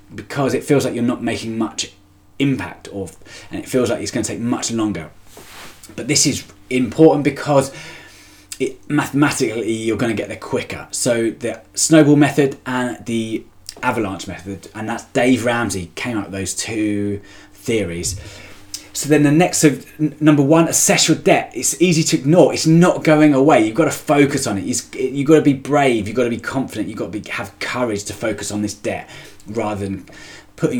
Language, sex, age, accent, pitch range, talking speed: English, male, 20-39, British, 100-140 Hz, 185 wpm